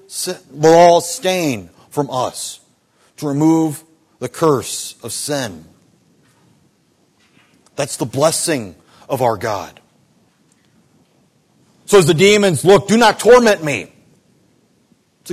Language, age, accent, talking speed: English, 40-59, American, 105 wpm